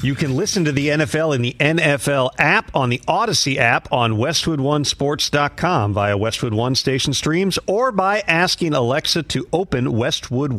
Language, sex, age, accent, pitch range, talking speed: English, male, 40-59, American, 120-155 Hz, 160 wpm